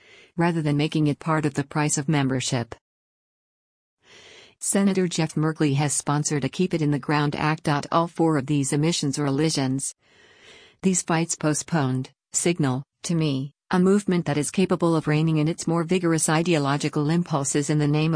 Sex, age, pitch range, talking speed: female, 50-69, 140-165 Hz, 170 wpm